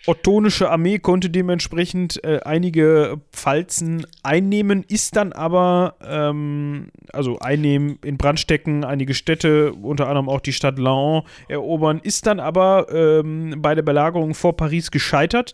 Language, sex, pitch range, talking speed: German, male, 140-170 Hz, 135 wpm